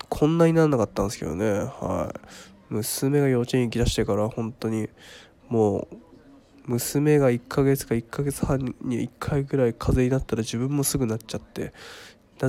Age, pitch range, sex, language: 20-39, 110-140 Hz, male, Japanese